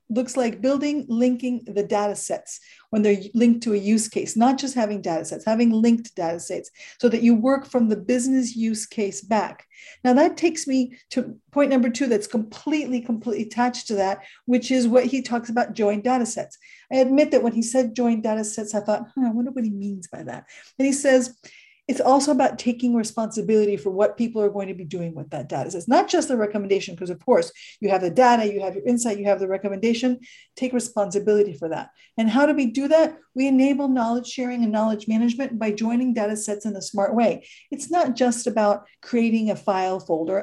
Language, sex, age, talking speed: English, female, 50-69, 215 wpm